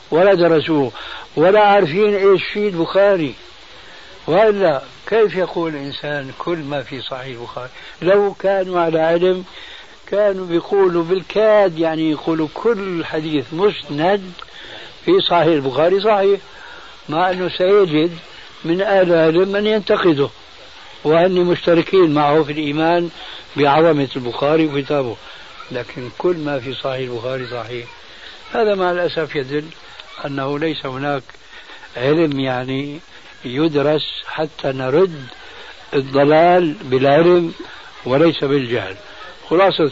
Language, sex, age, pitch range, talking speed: Arabic, male, 60-79, 140-180 Hz, 105 wpm